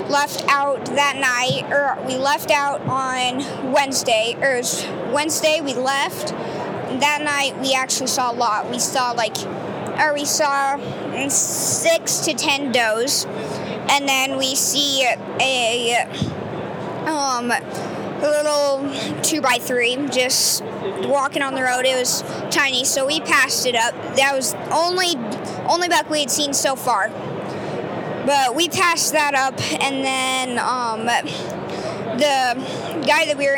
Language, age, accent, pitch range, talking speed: English, 20-39, American, 255-290 Hz, 140 wpm